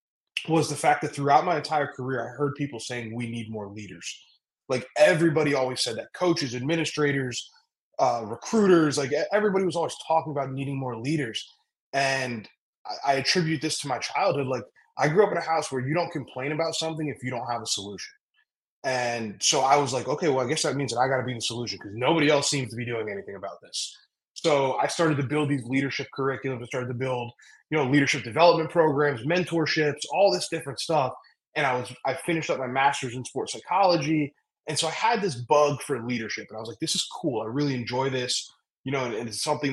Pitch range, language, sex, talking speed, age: 125-155 Hz, English, male, 220 wpm, 20-39